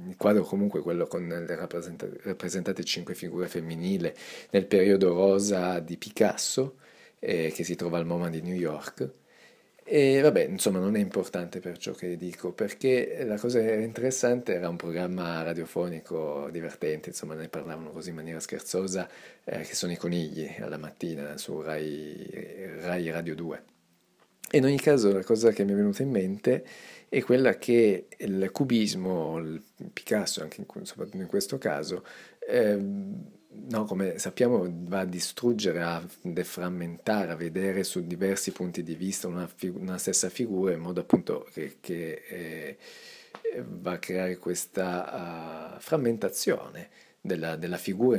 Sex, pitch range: male, 85-120 Hz